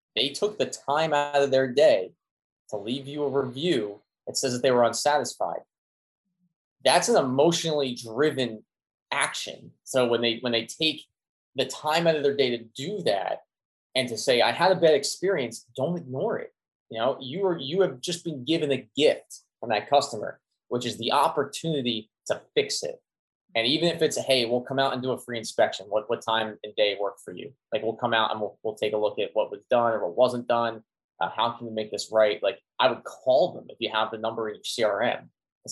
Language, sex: English, male